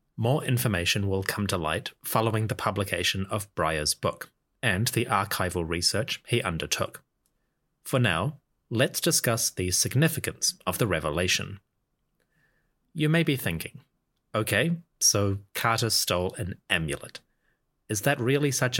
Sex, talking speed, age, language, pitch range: male, 130 wpm, 30-49, English, 95-125 Hz